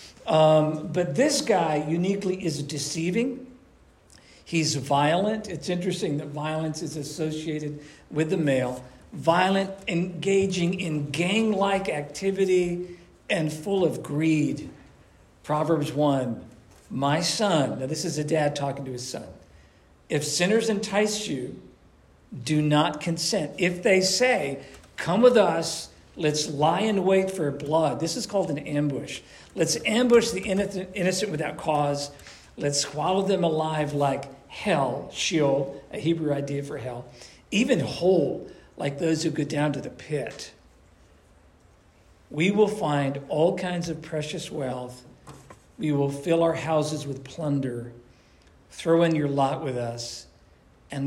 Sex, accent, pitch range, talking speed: male, American, 140-180 Hz, 135 wpm